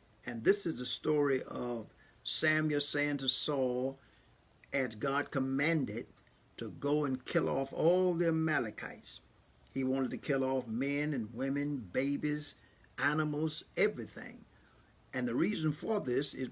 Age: 50-69